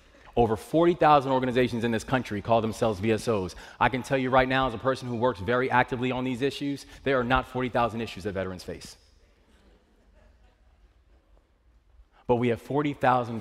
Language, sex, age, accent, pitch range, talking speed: English, male, 30-49, American, 85-130 Hz, 165 wpm